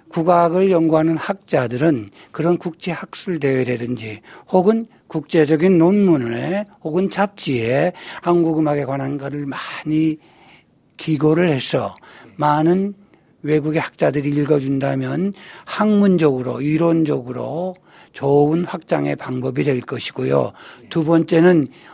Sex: male